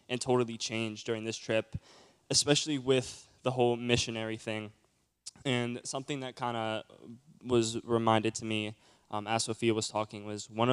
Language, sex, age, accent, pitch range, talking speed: English, male, 10-29, American, 105-120 Hz, 155 wpm